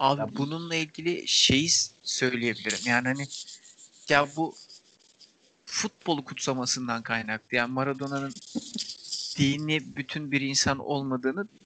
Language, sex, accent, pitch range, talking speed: Turkish, male, native, 125-155 Hz, 100 wpm